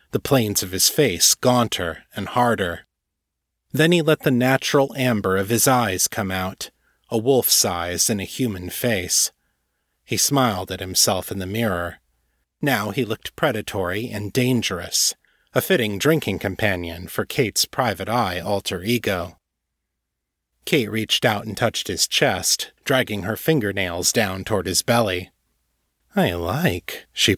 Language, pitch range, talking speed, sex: English, 90-125 Hz, 145 wpm, male